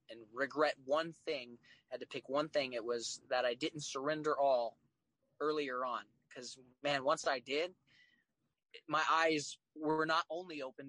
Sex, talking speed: male, 160 wpm